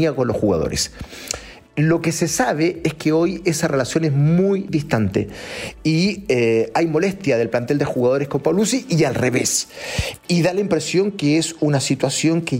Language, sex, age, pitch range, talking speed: Spanish, male, 40-59, 135-195 Hz, 175 wpm